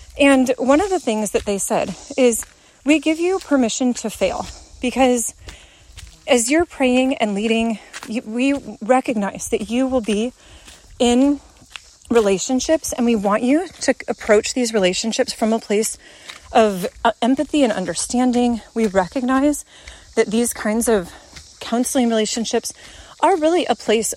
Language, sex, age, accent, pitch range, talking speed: English, female, 30-49, American, 220-265 Hz, 145 wpm